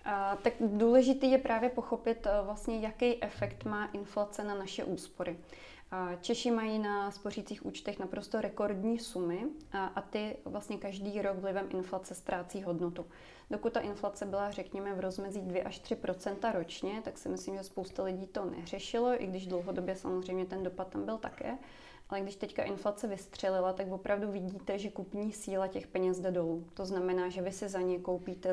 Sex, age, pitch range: female, 20-39, 185-205 Hz